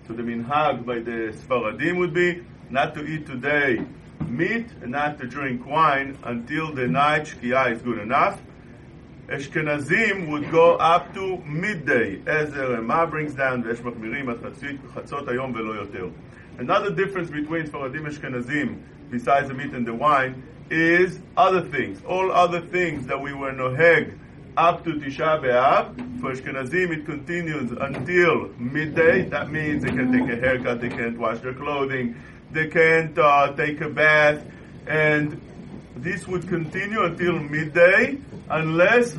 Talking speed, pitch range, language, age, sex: 145 wpm, 130-175 Hz, English, 50-69, male